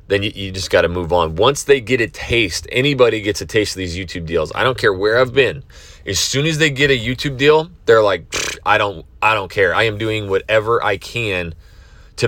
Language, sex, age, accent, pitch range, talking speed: English, male, 30-49, American, 95-140 Hz, 230 wpm